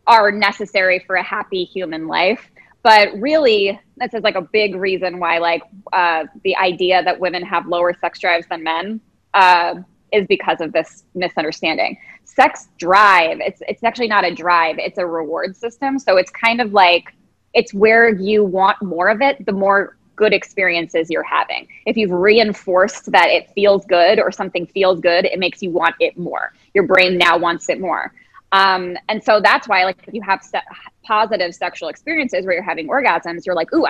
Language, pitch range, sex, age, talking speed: English, 180-220 Hz, female, 20-39, 190 wpm